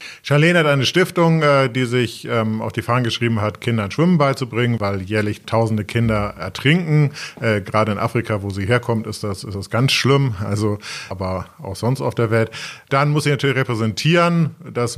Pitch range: 100-120 Hz